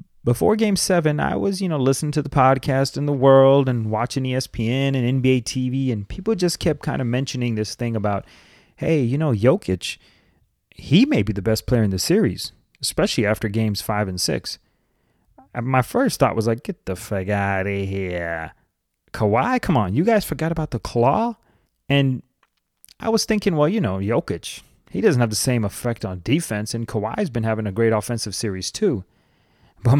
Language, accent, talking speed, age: English, American, 190 wpm, 30-49